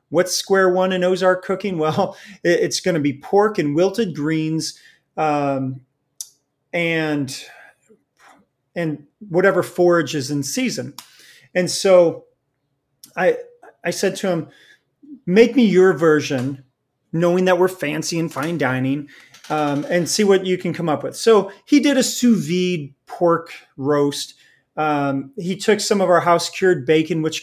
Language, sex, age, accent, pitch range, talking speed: English, male, 30-49, American, 150-185 Hz, 150 wpm